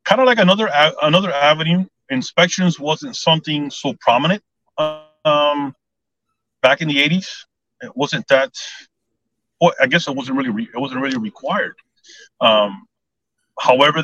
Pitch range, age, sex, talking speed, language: 130-190 Hz, 30-49, male, 135 wpm, English